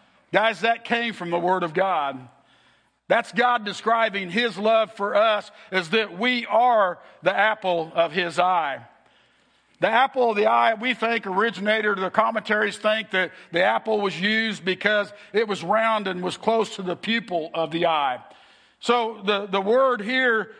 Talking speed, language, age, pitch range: 170 wpm, English, 50-69, 195-240 Hz